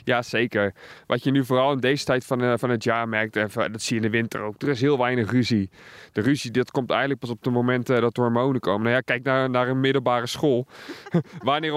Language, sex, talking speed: Dutch, male, 245 wpm